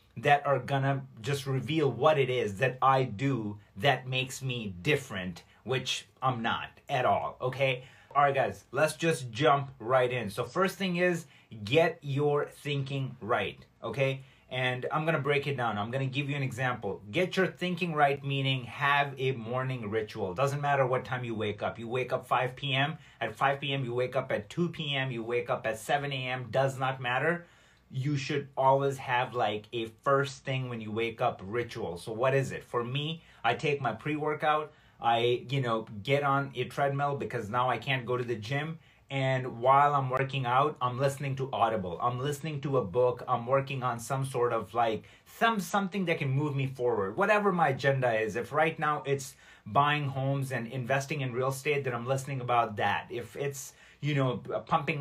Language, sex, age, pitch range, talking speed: English, male, 30-49, 125-145 Hz, 195 wpm